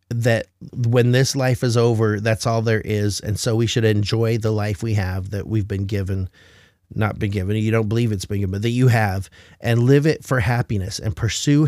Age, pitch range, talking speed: 30-49, 100-125 Hz, 220 wpm